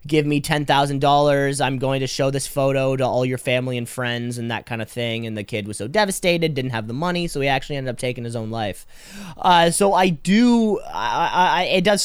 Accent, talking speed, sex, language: American, 235 wpm, male, English